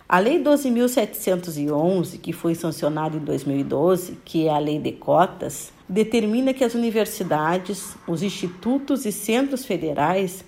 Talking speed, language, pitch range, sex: 130 wpm, Portuguese, 180-235 Hz, female